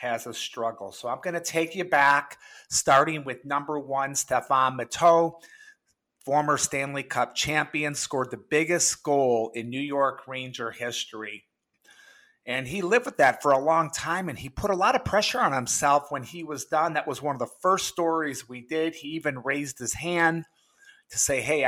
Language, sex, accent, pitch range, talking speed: English, male, American, 125-160 Hz, 190 wpm